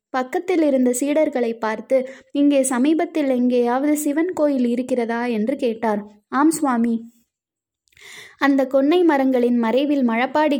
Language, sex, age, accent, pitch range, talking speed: Tamil, female, 20-39, native, 240-290 Hz, 110 wpm